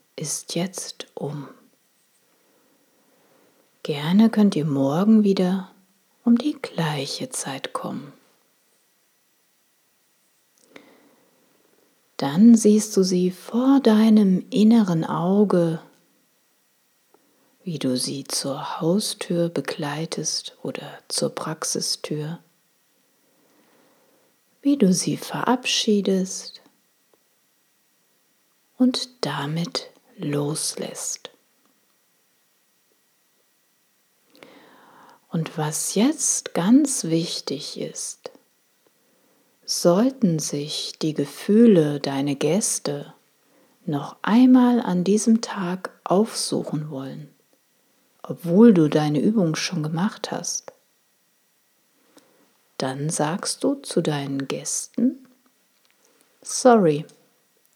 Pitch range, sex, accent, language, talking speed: 155-230 Hz, female, German, German, 75 wpm